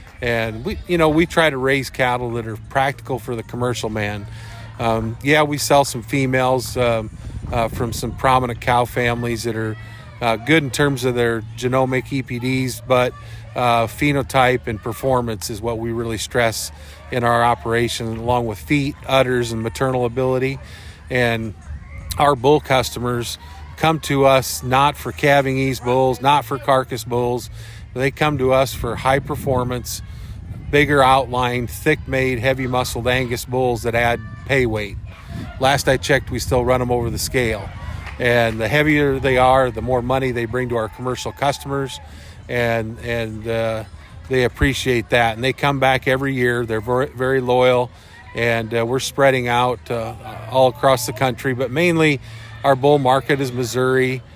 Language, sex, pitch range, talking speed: English, male, 115-130 Hz, 165 wpm